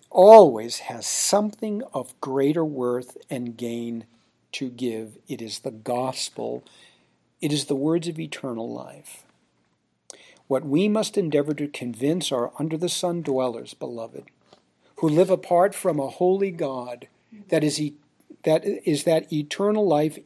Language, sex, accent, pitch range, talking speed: English, male, American, 120-180 Hz, 135 wpm